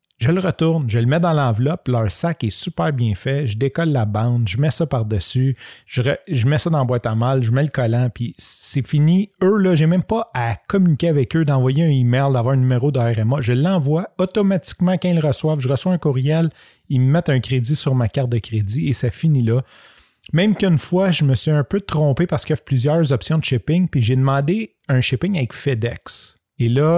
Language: French